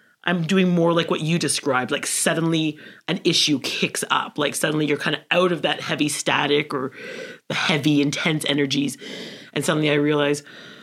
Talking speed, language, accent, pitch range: 175 wpm, English, American, 145-175 Hz